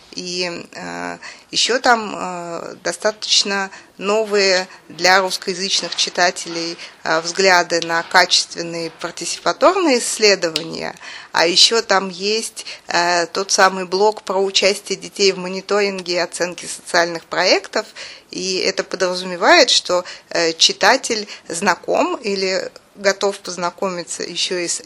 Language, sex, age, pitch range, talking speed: Russian, female, 20-39, 175-215 Hz, 110 wpm